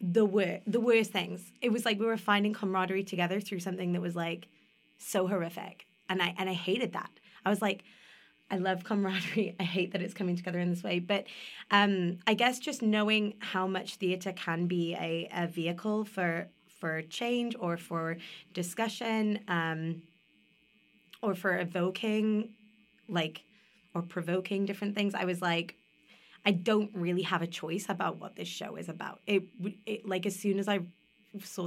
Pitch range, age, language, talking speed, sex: 170-205 Hz, 20-39, English, 175 wpm, female